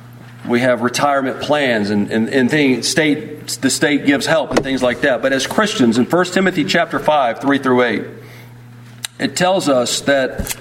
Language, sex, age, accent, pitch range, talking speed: English, male, 40-59, American, 130-190 Hz, 180 wpm